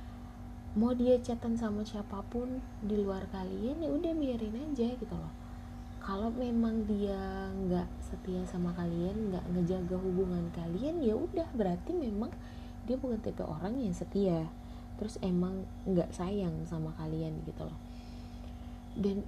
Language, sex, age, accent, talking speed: Indonesian, female, 20-39, native, 135 wpm